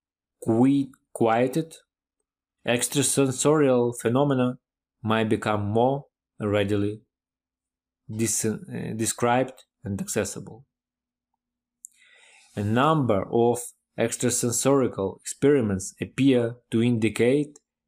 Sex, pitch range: male, 105-135 Hz